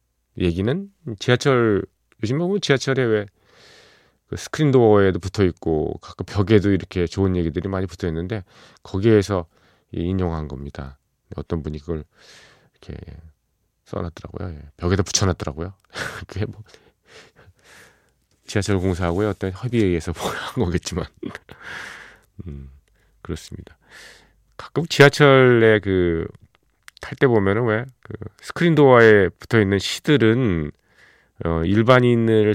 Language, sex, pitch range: Korean, male, 85-110 Hz